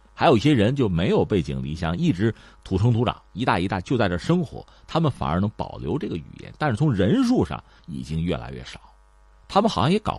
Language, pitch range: Chinese, 80-125 Hz